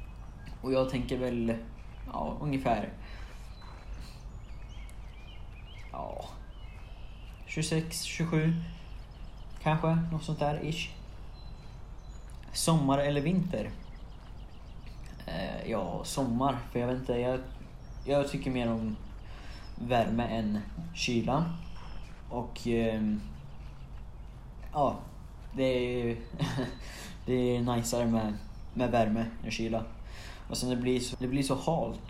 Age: 20-39